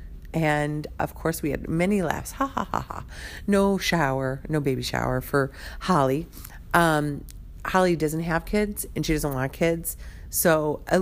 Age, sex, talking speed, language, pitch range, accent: 40-59, female, 165 wpm, English, 105-165 Hz, American